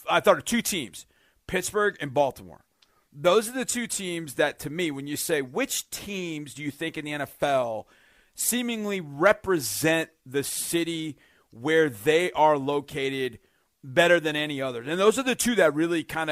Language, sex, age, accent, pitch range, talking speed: English, male, 40-59, American, 150-185 Hz, 175 wpm